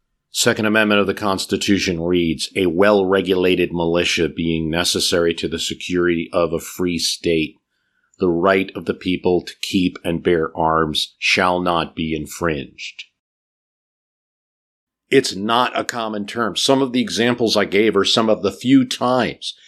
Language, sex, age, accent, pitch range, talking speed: English, male, 40-59, American, 90-120 Hz, 150 wpm